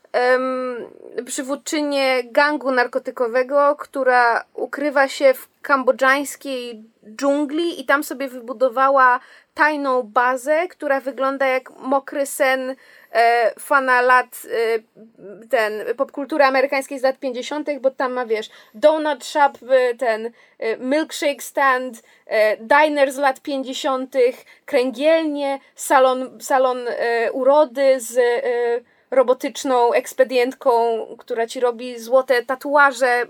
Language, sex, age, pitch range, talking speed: Polish, female, 20-39, 255-305 Hz, 110 wpm